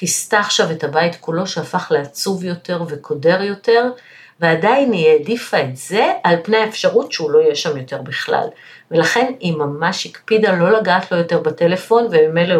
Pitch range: 155-200 Hz